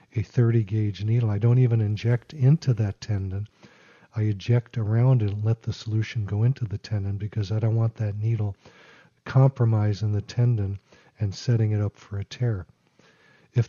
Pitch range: 110-125 Hz